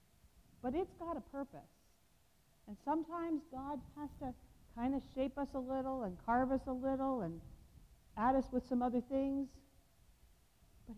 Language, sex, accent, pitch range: English, female, American, 225-290 Hz